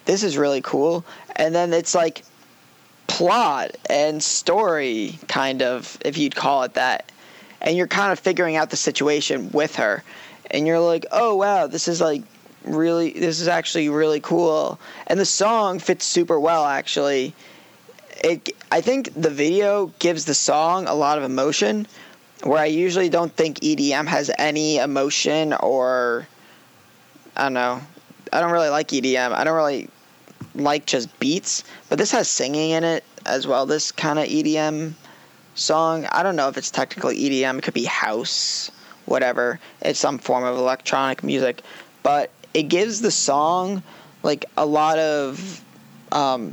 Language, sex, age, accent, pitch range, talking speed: English, male, 20-39, American, 145-175 Hz, 165 wpm